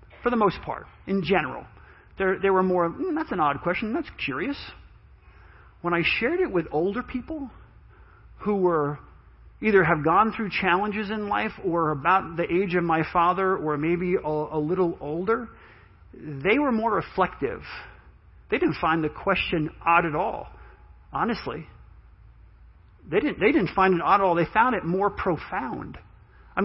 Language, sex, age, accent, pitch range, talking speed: English, male, 40-59, American, 145-190 Hz, 165 wpm